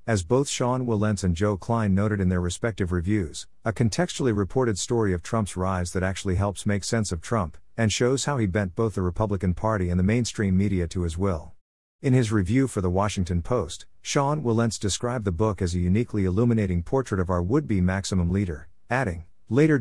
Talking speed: 200 wpm